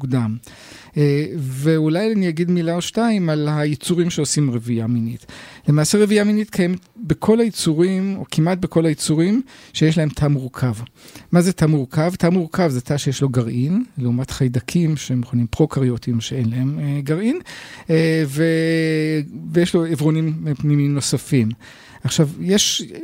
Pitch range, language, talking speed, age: 130-175 Hz, Hebrew, 145 wpm, 50-69